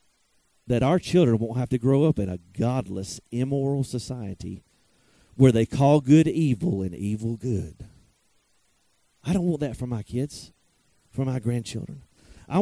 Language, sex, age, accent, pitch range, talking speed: English, male, 40-59, American, 110-155 Hz, 150 wpm